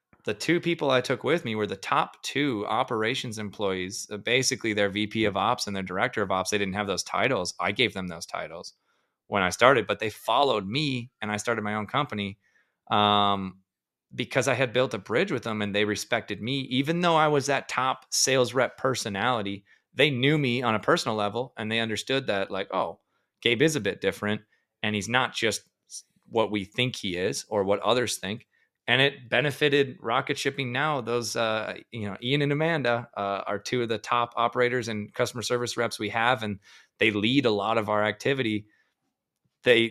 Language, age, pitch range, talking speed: English, 30-49, 105-130 Hz, 200 wpm